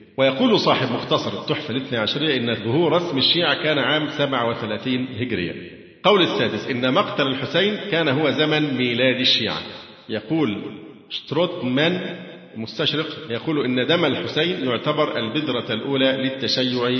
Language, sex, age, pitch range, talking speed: Arabic, male, 50-69, 120-155 Hz, 125 wpm